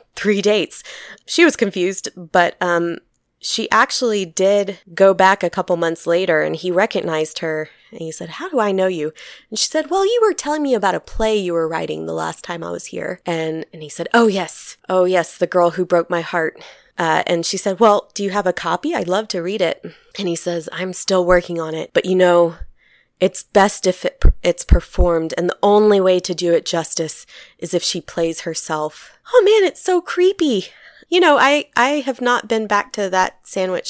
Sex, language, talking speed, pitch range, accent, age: female, English, 220 wpm, 170-205 Hz, American, 20-39